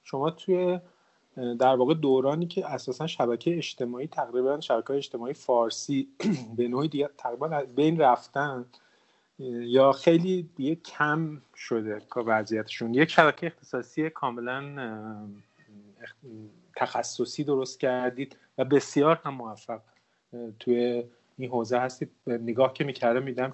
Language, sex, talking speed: Persian, male, 110 wpm